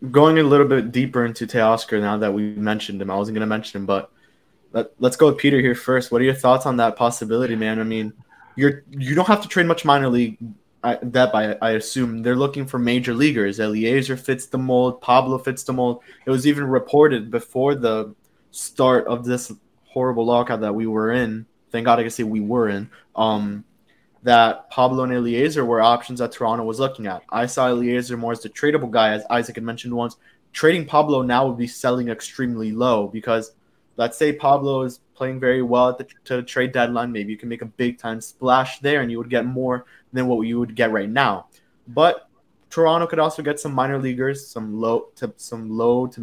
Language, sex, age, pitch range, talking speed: English, male, 20-39, 115-130 Hz, 220 wpm